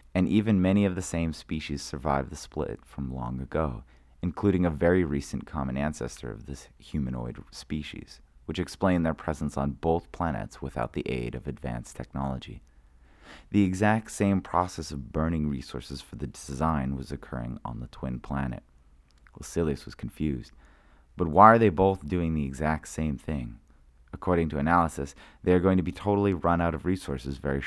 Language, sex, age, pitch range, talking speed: English, male, 30-49, 65-85 Hz, 170 wpm